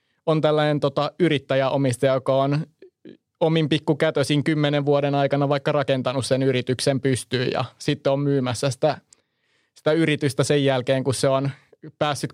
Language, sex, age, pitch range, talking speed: Finnish, male, 20-39, 135-150 Hz, 140 wpm